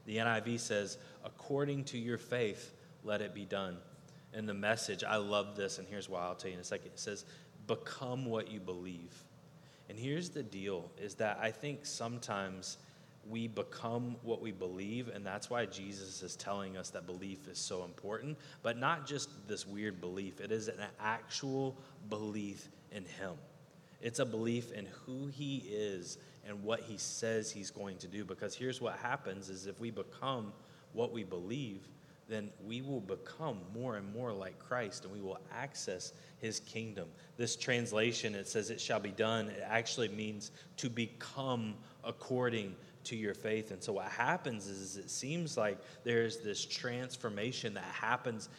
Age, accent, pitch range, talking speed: 20-39, American, 100-130 Hz, 180 wpm